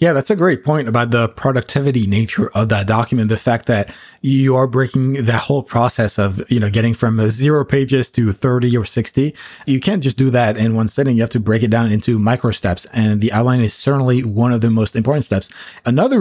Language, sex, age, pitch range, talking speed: English, male, 20-39, 115-140 Hz, 225 wpm